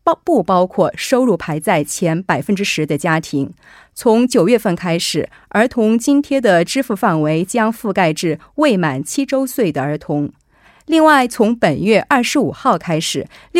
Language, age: Korean, 30-49